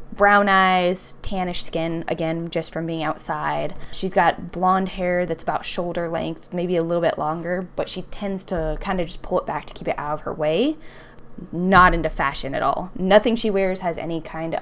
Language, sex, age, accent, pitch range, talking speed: English, female, 10-29, American, 160-190 Hz, 205 wpm